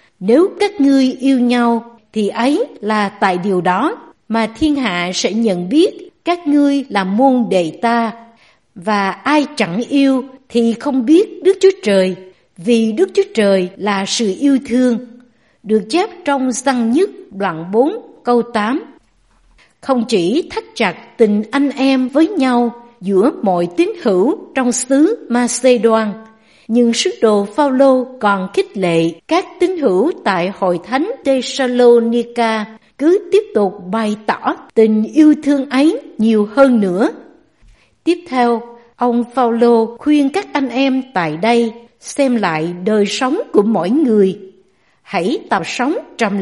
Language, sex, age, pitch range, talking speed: Vietnamese, female, 60-79, 210-275 Hz, 145 wpm